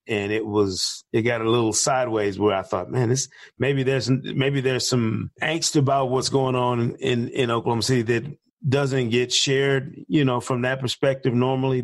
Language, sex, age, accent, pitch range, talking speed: English, male, 40-59, American, 110-135 Hz, 185 wpm